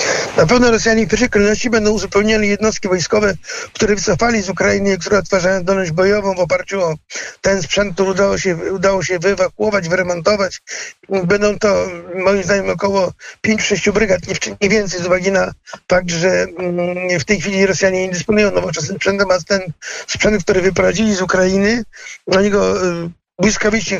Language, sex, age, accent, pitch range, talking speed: Polish, male, 50-69, native, 185-210 Hz, 155 wpm